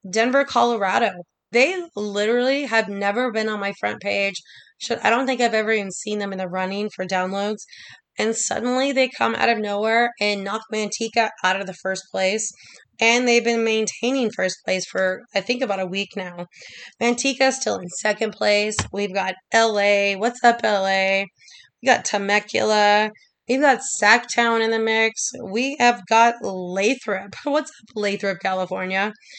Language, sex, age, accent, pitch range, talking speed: English, female, 20-39, American, 195-235 Hz, 165 wpm